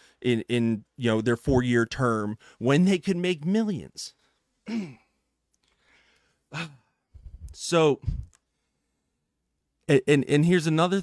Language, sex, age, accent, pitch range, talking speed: English, male, 30-49, American, 115-155 Hz, 105 wpm